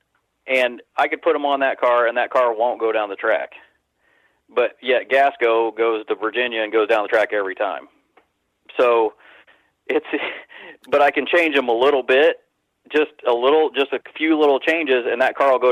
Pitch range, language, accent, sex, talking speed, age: 110-140 Hz, English, American, male, 200 wpm, 40-59